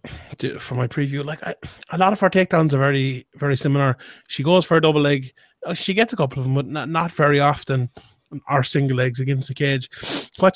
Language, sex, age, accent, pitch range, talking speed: English, male, 20-39, Irish, 135-165 Hz, 215 wpm